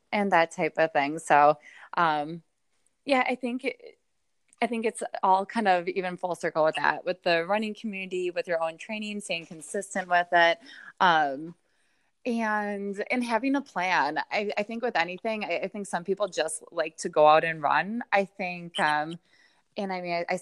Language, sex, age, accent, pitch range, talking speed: English, female, 20-39, American, 165-210 Hz, 190 wpm